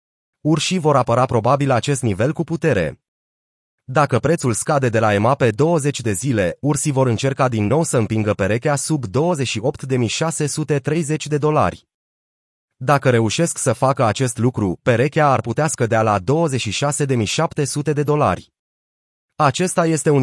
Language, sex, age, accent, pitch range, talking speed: Romanian, male, 30-49, native, 115-155 Hz, 140 wpm